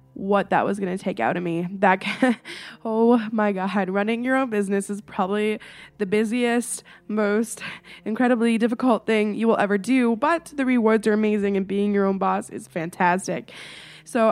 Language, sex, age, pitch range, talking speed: English, female, 20-39, 195-235 Hz, 170 wpm